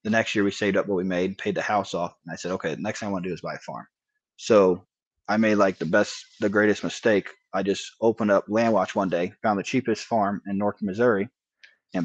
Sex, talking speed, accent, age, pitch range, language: male, 265 wpm, American, 20-39, 95-110 Hz, English